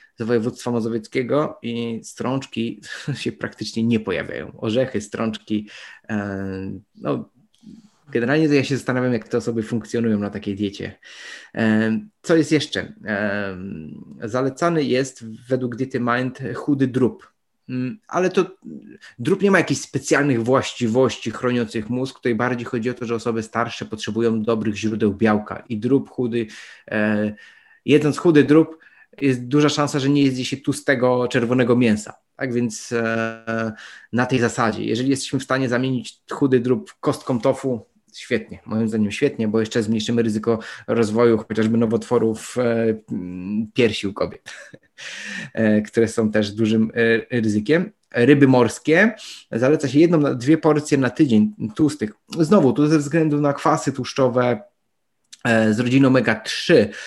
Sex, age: male, 20-39